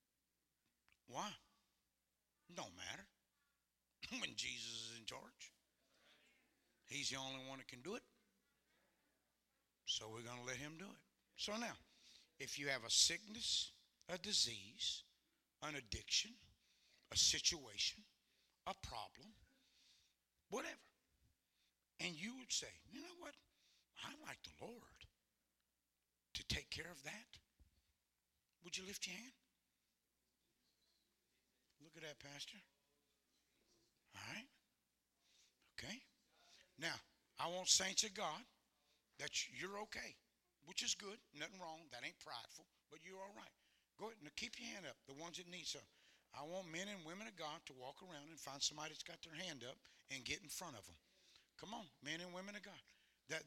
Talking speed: 150 wpm